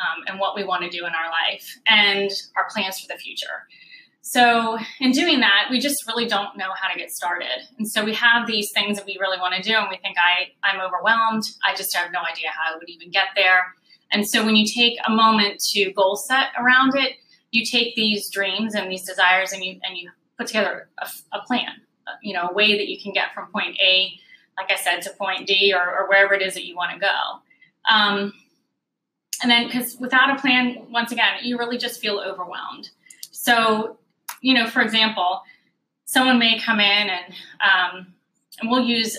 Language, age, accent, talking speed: English, 20-39, American, 215 wpm